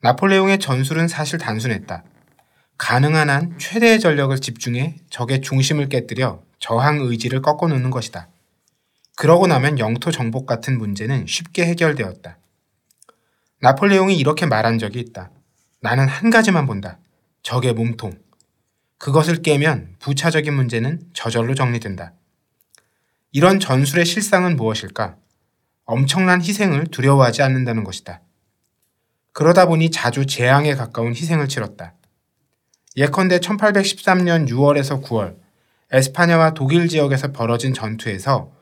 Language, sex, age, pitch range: Korean, male, 20-39, 120-165 Hz